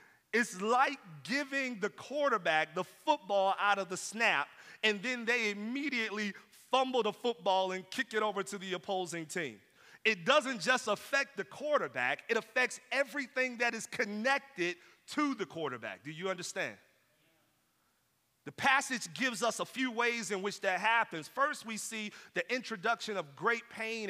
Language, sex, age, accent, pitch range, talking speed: English, male, 40-59, American, 145-230 Hz, 155 wpm